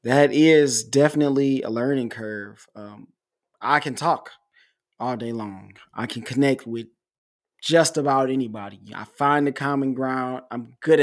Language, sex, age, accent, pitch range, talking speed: English, male, 20-39, American, 120-150 Hz, 145 wpm